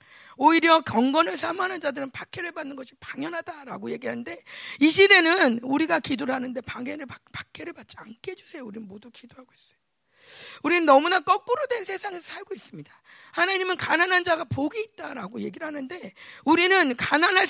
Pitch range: 265-370 Hz